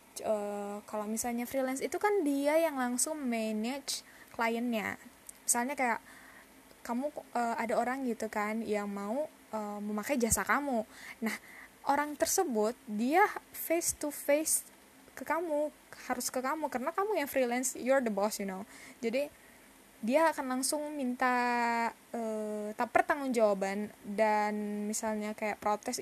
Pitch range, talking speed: 220-285 Hz, 135 wpm